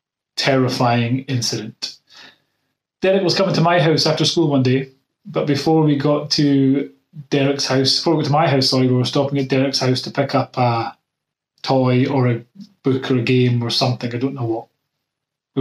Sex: male